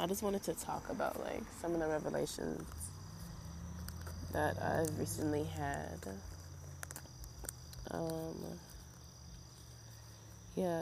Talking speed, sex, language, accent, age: 95 wpm, female, English, American, 20-39